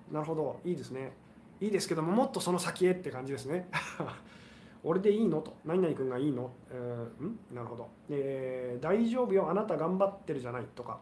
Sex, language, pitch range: male, Japanese, 140-200 Hz